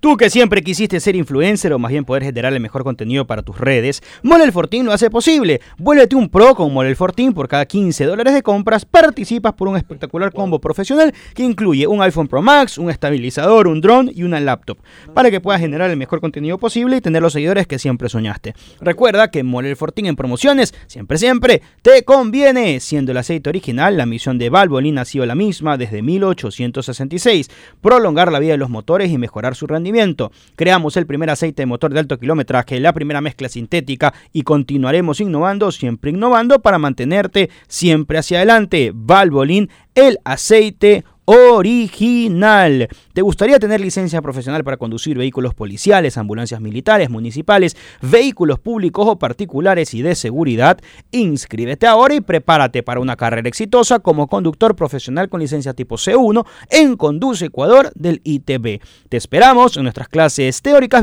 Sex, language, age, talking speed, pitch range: male, Spanish, 30-49, 170 wpm, 135-225 Hz